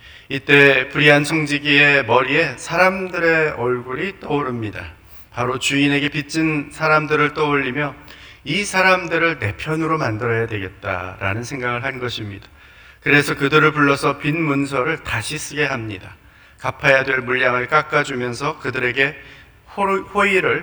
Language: Korean